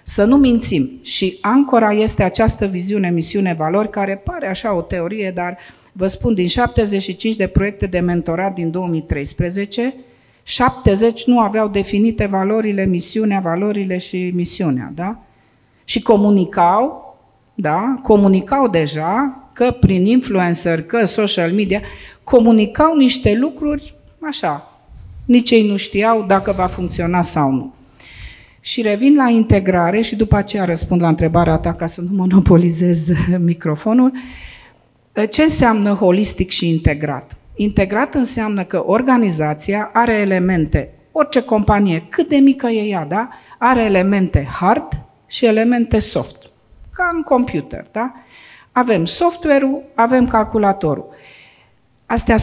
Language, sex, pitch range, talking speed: Romanian, female, 180-235 Hz, 125 wpm